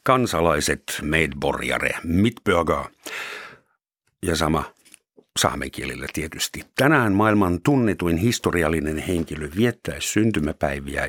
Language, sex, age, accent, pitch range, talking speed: Finnish, male, 60-79, native, 80-105 Hz, 80 wpm